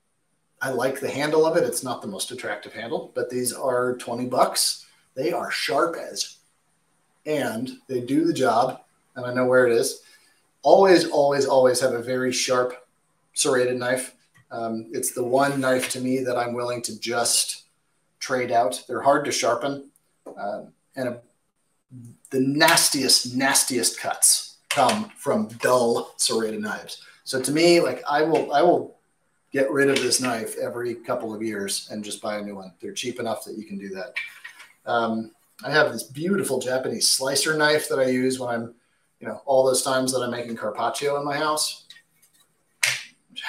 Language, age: English, 30-49